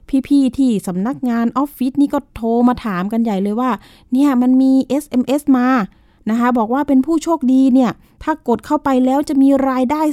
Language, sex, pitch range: Thai, female, 225-270 Hz